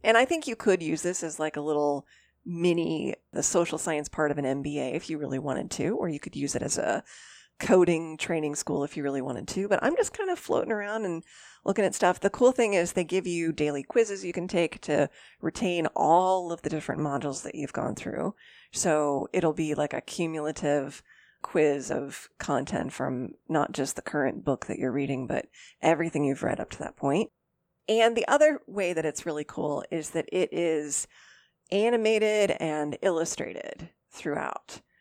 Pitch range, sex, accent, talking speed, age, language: 145-185 Hz, female, American, 195 wpm, 30-49, English